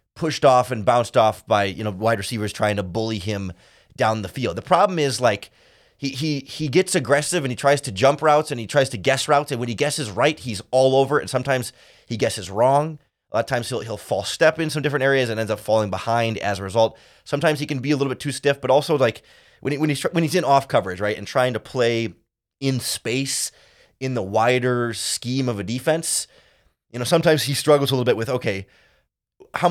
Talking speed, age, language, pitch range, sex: 240 wpm, 30-49, English, 110-140 Hz, male